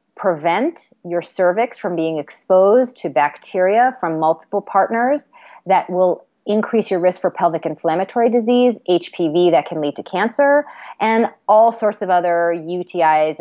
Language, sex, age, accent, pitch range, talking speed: English, female, 30-49, American, 180-265 Hz, 145 wpm